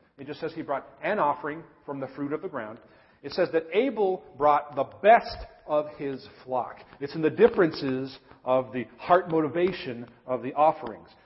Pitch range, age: 100-165 Hz, 40-59